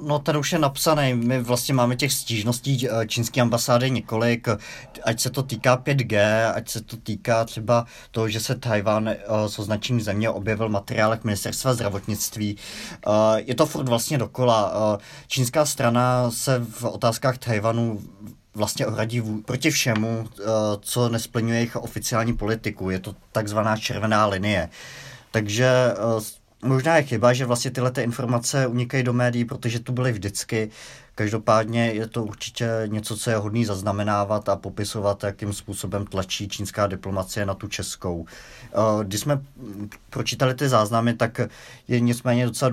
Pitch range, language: 105-125 Hz, Czech